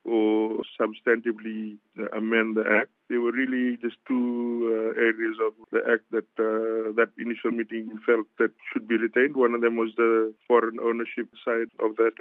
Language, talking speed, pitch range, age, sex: English, 170 wpm, 110-120 Hz, 50-69, male